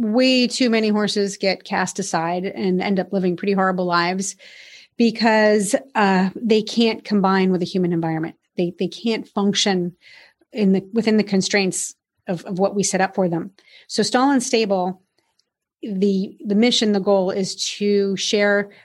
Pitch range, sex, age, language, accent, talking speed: 190-235 Hz, female, 30-49, English, American, 165 wpm